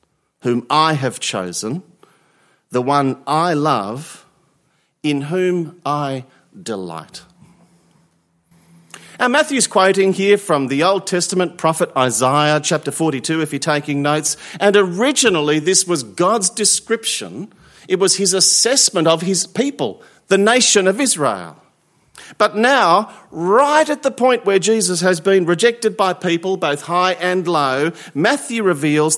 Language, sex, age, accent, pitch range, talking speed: English, male, 40-59, Australian, 140-195 Hz, 130 wpm